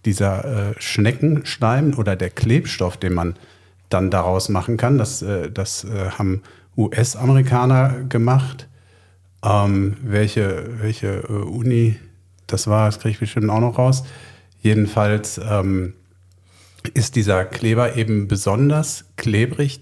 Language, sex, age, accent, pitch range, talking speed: German, male, 50-69, German, 95-115 Hz, 125 wpm